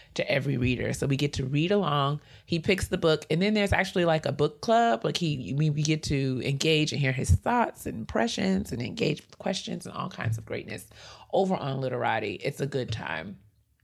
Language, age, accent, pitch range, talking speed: English, 30-49, American, 125-160 Hz, 210 wpm